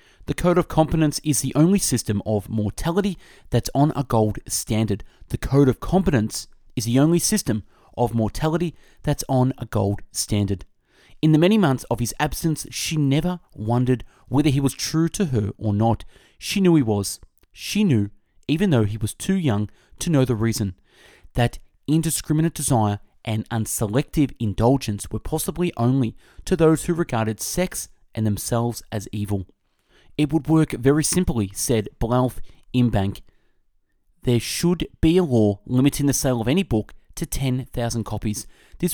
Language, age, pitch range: English, 30-49, 110-155 Hz